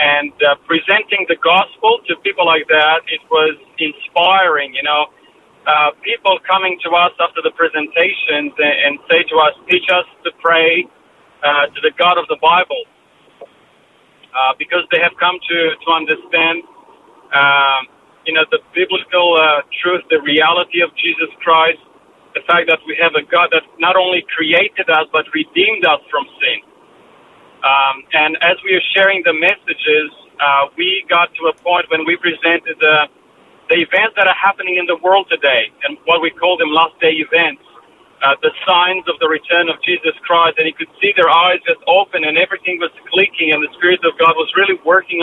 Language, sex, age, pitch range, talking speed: English, male, 40-59, 155-190 Hz, 185 wpm